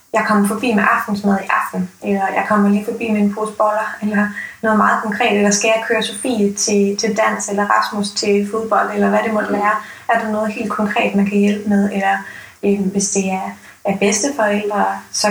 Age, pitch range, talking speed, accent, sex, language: 20-39, 200-220 Hz, 210 wpm, native, female, Danish